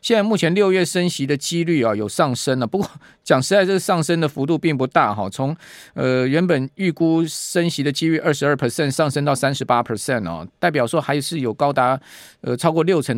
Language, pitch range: Chinese, 120-155 Hz